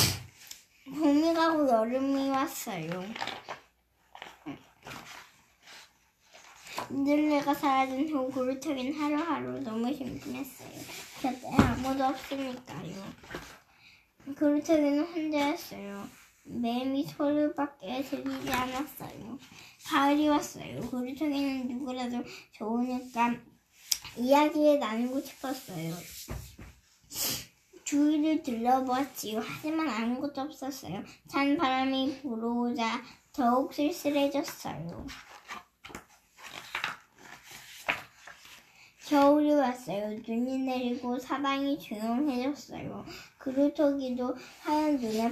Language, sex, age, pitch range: Korean, male, 10-29, 245-285 Hz